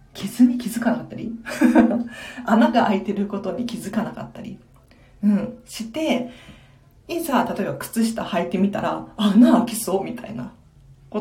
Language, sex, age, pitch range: Japanese, female, 40-59, 190-245 Hz